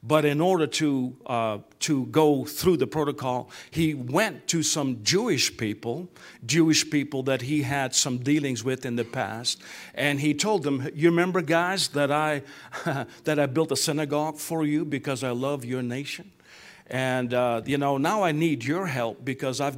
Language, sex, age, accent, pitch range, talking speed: English, male, 50-69, American, 125-155 Hz, 180 wpm